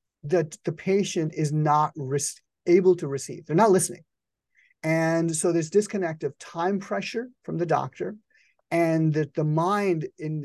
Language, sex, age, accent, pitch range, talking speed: English, male, 30-49, American, 145-175 Hz, 155 wpm